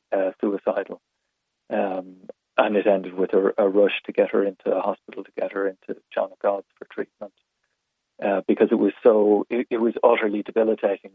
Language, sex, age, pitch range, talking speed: English, male, 40-59, 100-110 Hz, 190 wpm